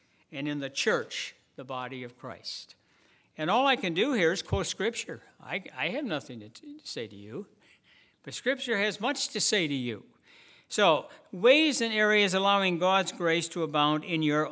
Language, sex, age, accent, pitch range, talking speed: English, male, 60-79, American, 160-210 Hz, 190 wpm